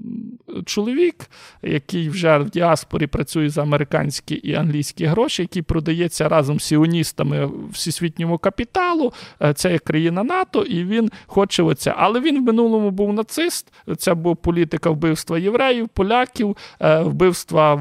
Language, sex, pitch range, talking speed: Ukrainian, male, 155-200 Hz, 130 wpm